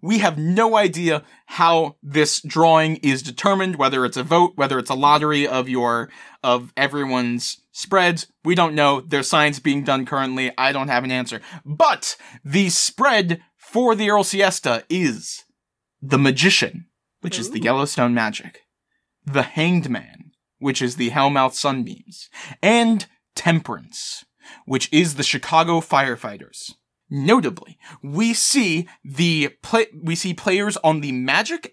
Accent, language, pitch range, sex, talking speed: American, English, 145-205 Hz, male, 145 wpm